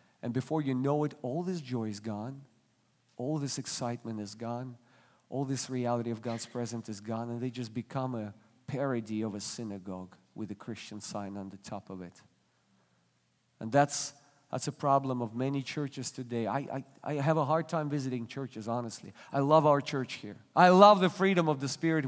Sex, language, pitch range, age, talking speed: male, English, 120-180 Hz, 40-59, 195 wpm